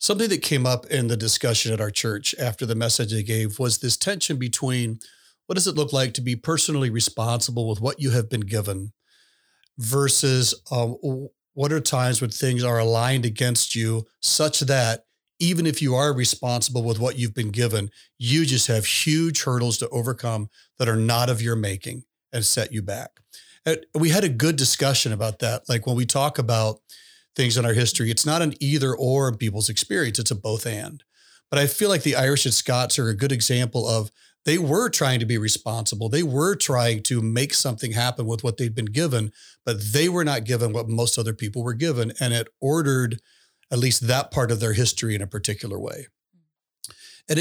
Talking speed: 200 wpm